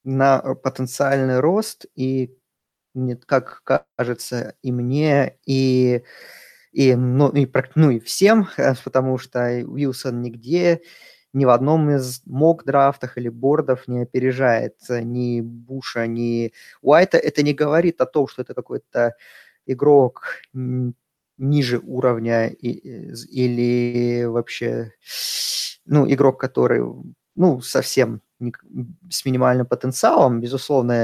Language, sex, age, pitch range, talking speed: Russian, male, 20-39, 120-145 Hz, 105 wpm